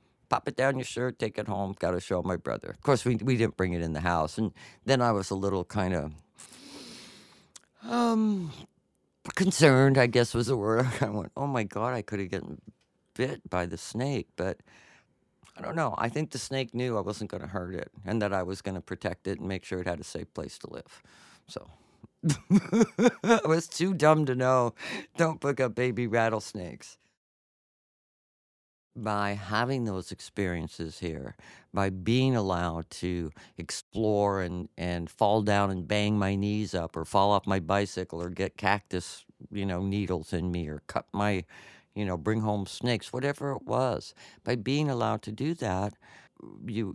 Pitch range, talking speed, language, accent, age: 95-125 Hz, 185 wpm, English, American, 50-69